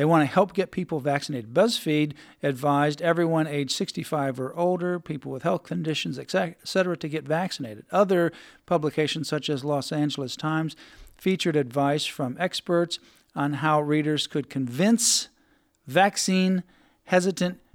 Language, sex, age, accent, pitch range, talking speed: English, male, 50-69, American, 150-185 Hz, 130 wpm